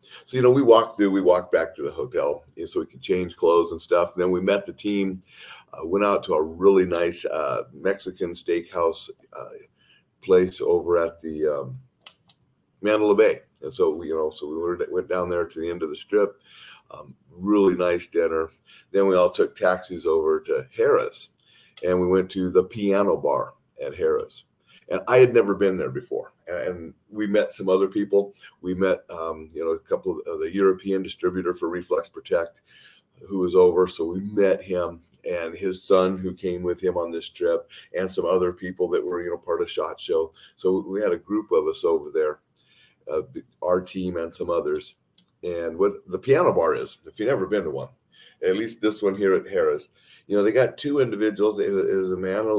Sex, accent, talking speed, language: male, American, 210 wpm, English